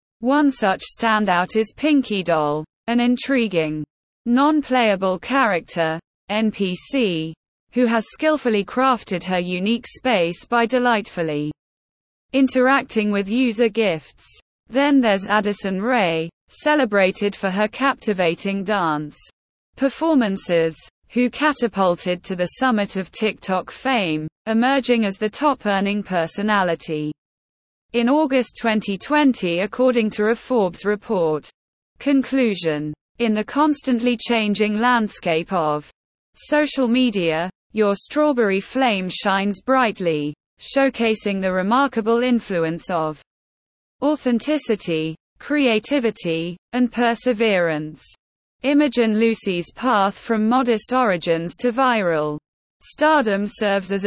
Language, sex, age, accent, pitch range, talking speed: English, female, 20-39, British, 180-250 Hz, 100 wpm